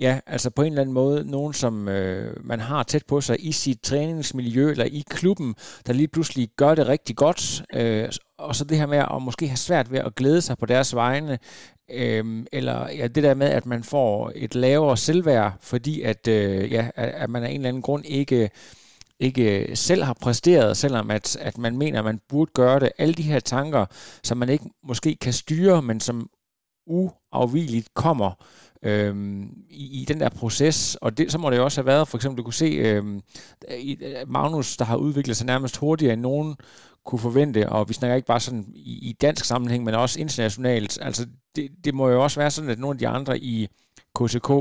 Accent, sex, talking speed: native, male, 195 wpm